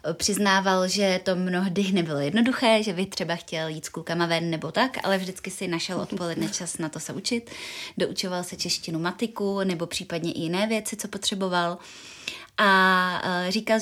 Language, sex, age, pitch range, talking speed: Czech, female, 20-39, 170-195 Hz, 170 wpm